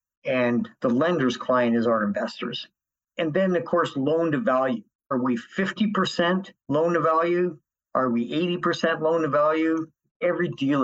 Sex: male